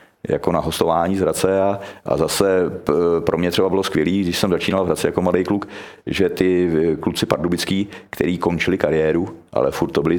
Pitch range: 80-90 Hz